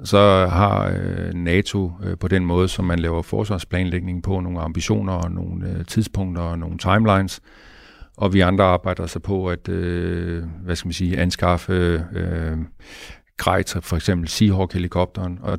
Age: 50-69